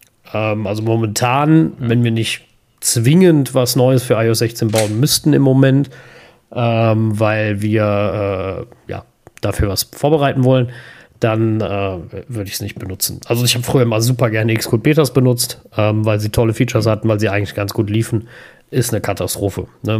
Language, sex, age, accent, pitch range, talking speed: German, male, 40-59, German, 110-125 Hz, 160 wpm